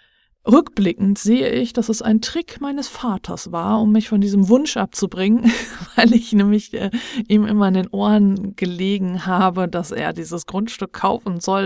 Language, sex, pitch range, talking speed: German, female, 185-225 Hz, 170 wpm